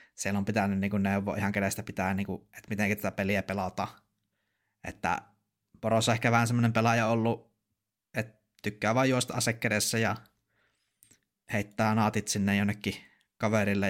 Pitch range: 100-110 Hz